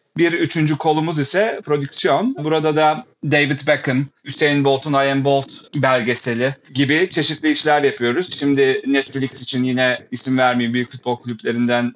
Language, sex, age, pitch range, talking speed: Turkish, male, 40-59, 130-155 Hz, 135 wpm